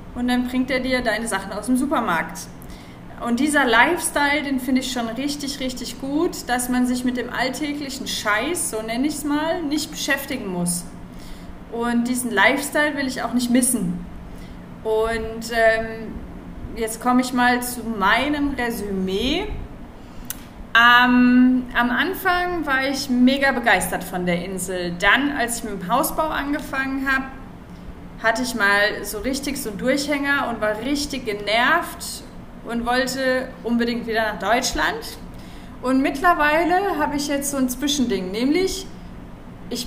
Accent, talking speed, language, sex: German, 145 wpm, German, female